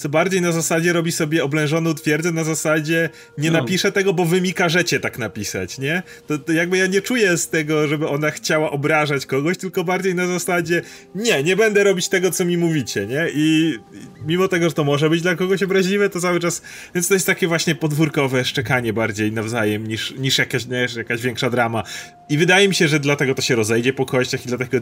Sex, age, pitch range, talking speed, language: male, 30-49, 125-175 Hz, 215 wpm, Polish